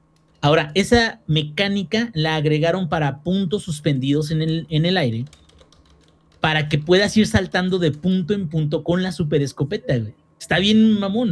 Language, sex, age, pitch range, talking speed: Spanish, male, 40-59, 145-175 Hz, 150 wpm